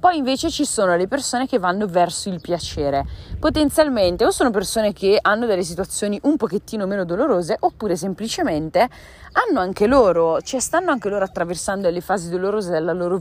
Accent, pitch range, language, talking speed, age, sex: native, 175-255 Hz, Italian, 175 wpm, 20-39, female